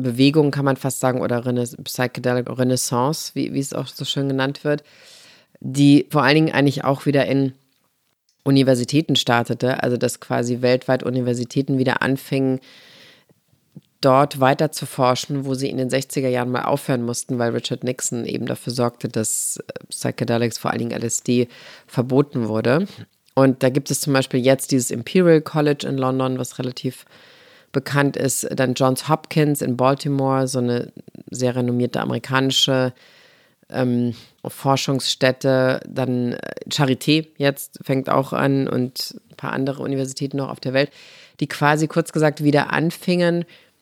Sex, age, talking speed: female, 30-49, 150 wpm